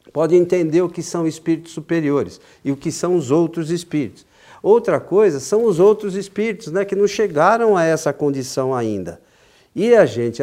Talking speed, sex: 180 wpm, male